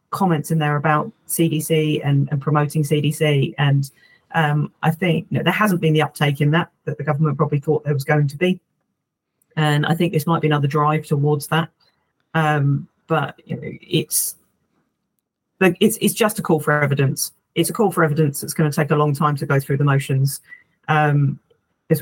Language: English